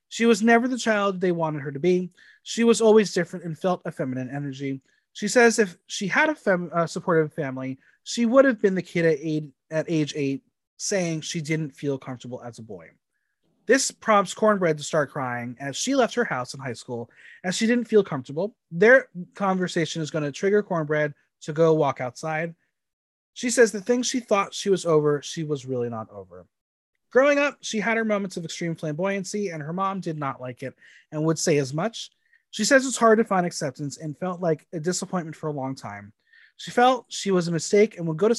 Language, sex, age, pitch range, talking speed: English, male, 30-49, 150-215 Hz, 215 wpm